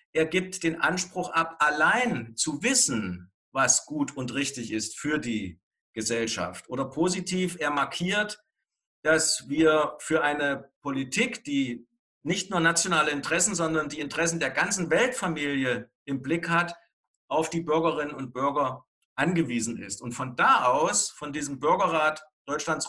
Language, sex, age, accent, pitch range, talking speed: German, male, 50-69, German, 140-180 Hz, 140 wpm